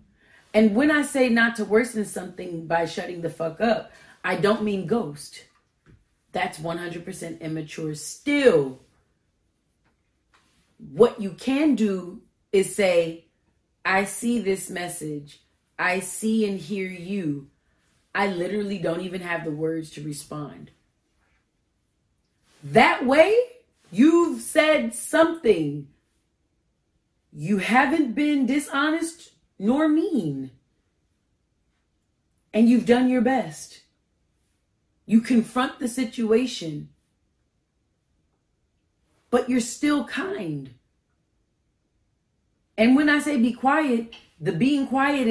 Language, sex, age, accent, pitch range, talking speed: English, female, 30-49, American, 165-250 Hz, 105 wpm